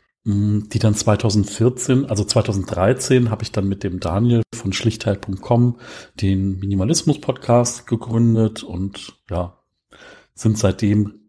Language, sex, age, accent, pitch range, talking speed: German, male, 40-59, German, 100-115 Hz, 105 wpm